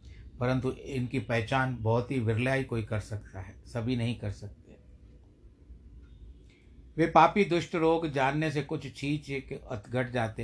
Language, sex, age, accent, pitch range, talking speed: Hindi, male, 60-79, native, 105-145 Hz, 145 wpm